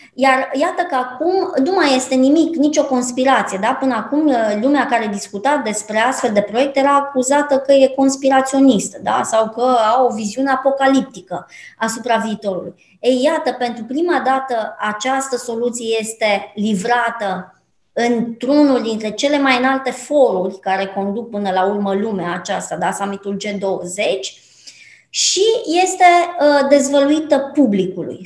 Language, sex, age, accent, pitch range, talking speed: Romanian, male, 20-39, native, 220-285 Hz, 135 wpm